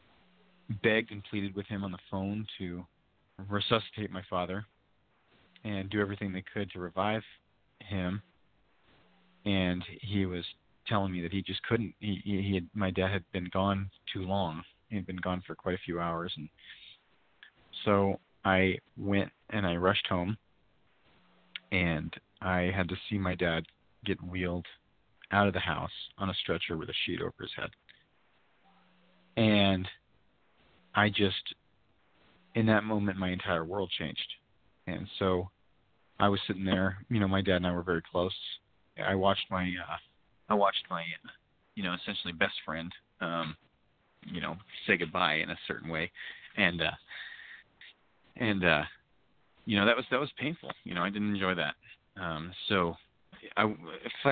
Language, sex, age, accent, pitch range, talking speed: English, male, 40-59, American, 90-105 Hz, 160 wpm